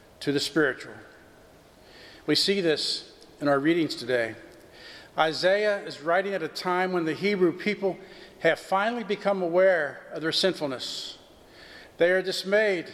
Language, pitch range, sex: English, 150-185 Hz, male